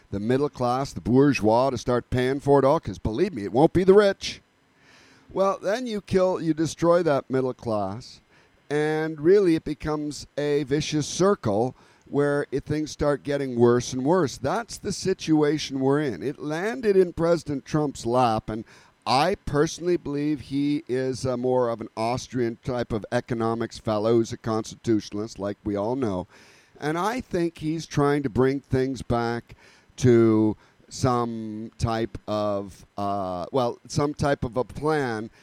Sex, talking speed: male, 160 wpm